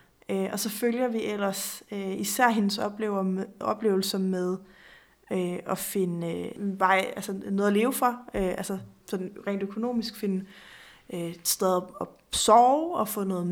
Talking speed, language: 135 wpm, Danish